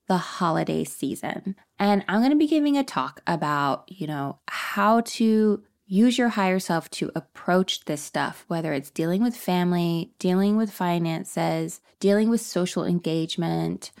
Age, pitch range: 20-39, 170-220 Hz